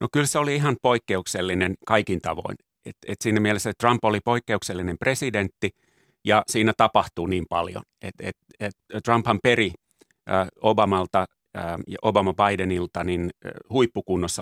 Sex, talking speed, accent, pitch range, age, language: male, 130 wpm, native, 95-115 Hz, 30-49, Finnish